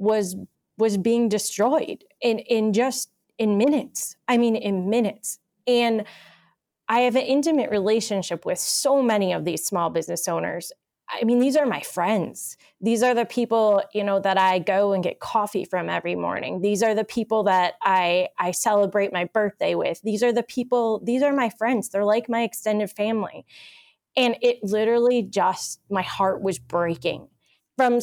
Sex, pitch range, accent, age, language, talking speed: female, 195-235 Hz, American, 20-39, English, 175 wpm